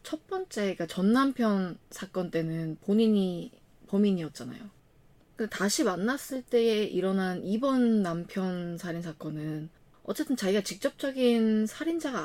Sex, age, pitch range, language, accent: female, 20-39, 180-240 Hz, Korean, native